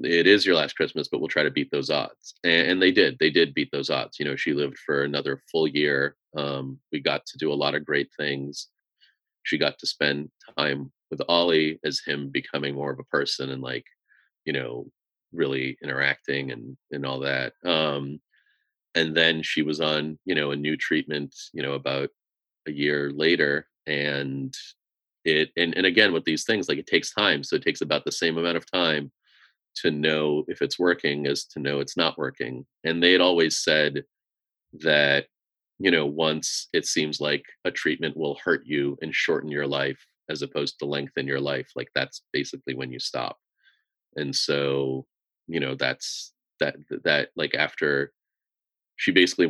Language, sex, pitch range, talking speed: English, male, 70-75 Hz, 190 wpm